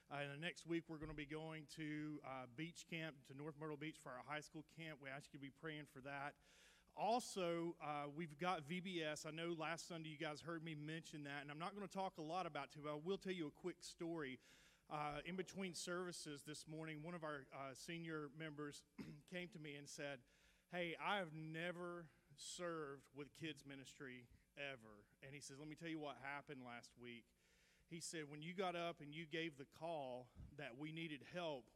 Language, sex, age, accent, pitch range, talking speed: English, male, 30-49, American, 140-165 Hz, 220 wpm